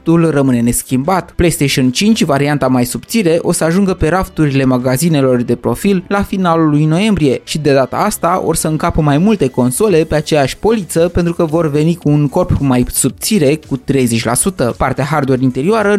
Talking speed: 175 wpm